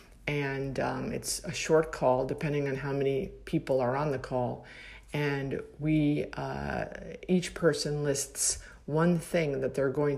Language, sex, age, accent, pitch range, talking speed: English, female, 50-69, American, 140-170 Hz, 155 wpm